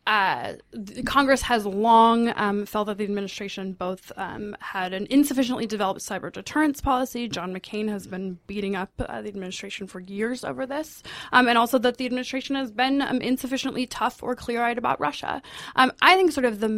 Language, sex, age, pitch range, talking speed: English, female, 20-39, 195-255 Hz, 185 wpm